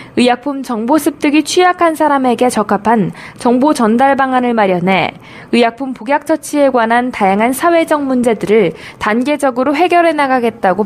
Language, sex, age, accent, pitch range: Korean, female, 20-39, native, 220-290 Hz